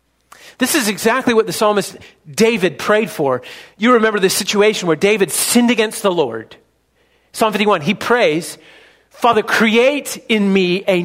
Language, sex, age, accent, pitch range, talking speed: English, male, 40-59, American, 200-260 Hz, 150 wpm